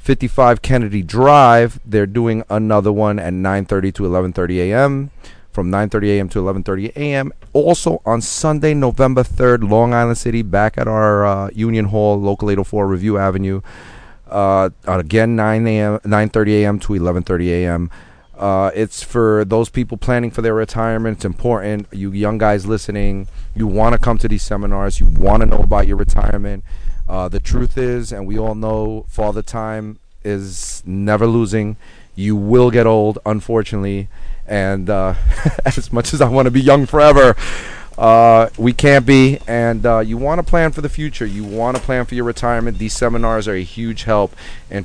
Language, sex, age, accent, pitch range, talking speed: English, male, 30-49, American, 100-115 Hz, 170 wpm